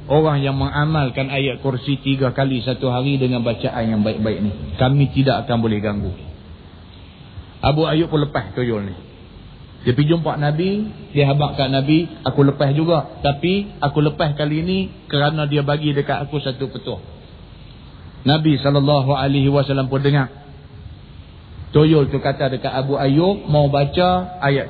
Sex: male